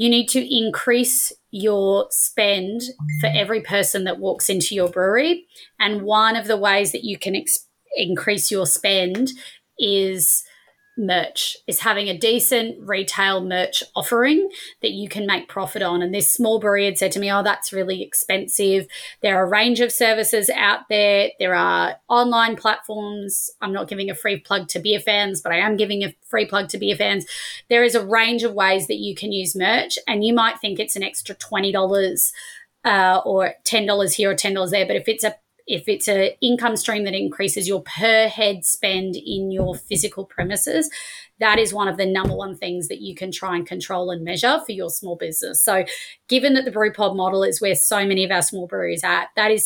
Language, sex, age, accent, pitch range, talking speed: English, female, 20-39, Australian, 190-225 Hz, 200 wpm